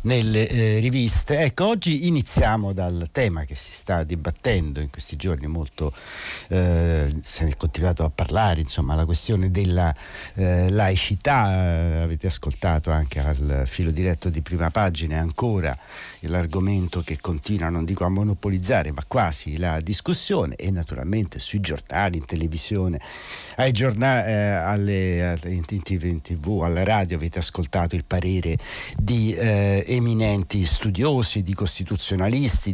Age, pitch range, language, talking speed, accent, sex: 60-79, 85-110 Hz, Italian, 135 wpm, native, male